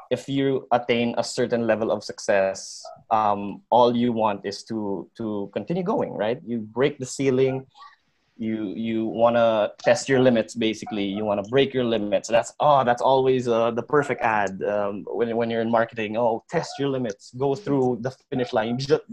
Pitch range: 110-140 Hz